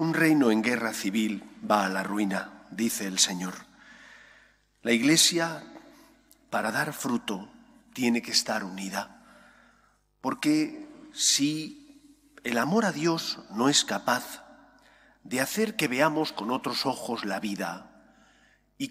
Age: 40-59